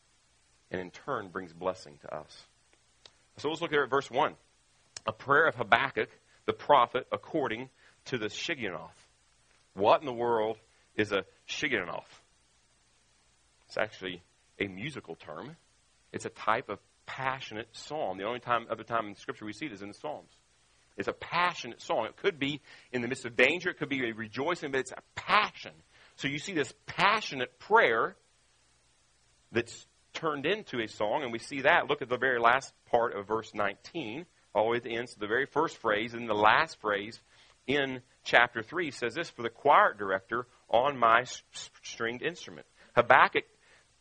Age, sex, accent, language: 40-59, male, American, English